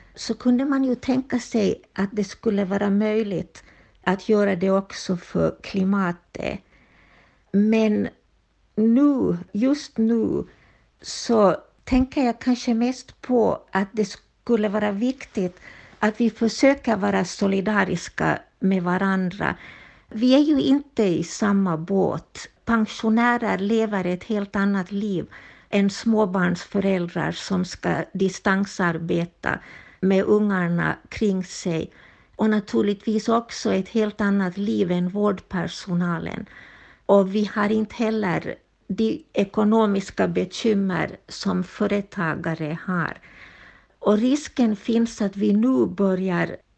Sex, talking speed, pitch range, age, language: female, 115 wpm, 190-225 Hz, 60-79, Swedish